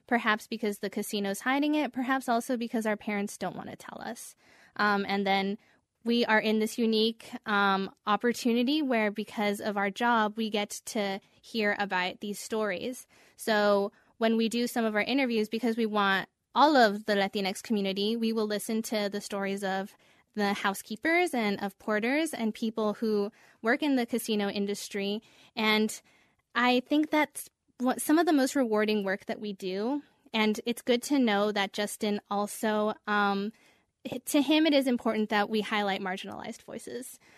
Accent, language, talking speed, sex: American, English, 170 wpm, female